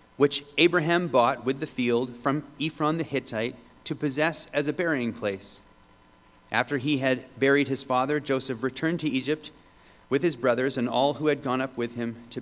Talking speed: 185 wpm